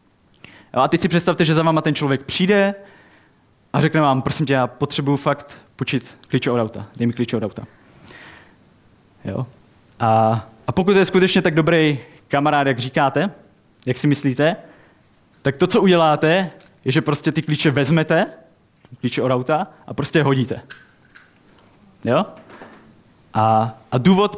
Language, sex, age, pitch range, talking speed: Czech, male, 20-39, 125-160 Hz, 155 wpm